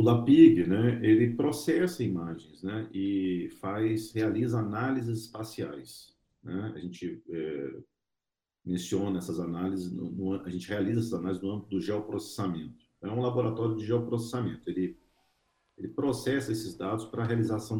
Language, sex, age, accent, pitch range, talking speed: Portuguese, male, 50-69, Brazilian, 95-120 Hz, 150 wpm